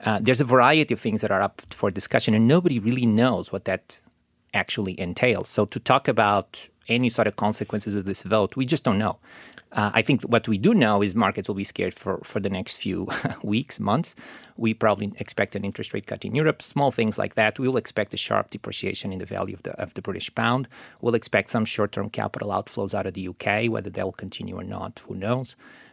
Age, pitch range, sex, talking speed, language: 30-49, 100-120 Hz, male, 225 wpm, English